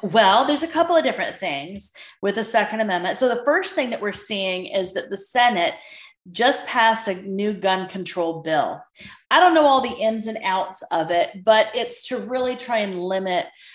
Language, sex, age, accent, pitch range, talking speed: English, female, 30-49, American, 185-265 Hz, 200 wpm